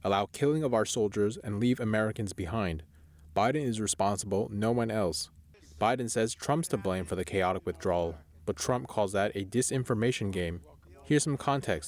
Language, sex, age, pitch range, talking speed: English, male, 20-39, 95-125 Hz, 170 wpm